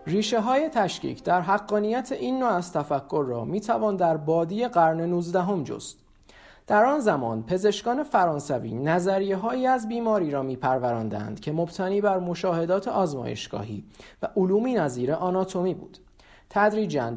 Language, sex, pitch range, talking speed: Persian, male, 140-210 Hz, 135 wpm